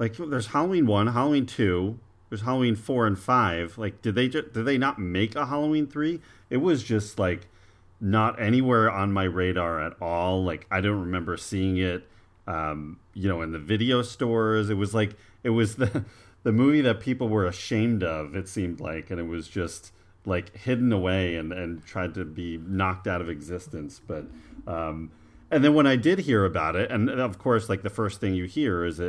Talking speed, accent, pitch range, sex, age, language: 200 wpm, American, 90-110 Hz, male, 30-49, English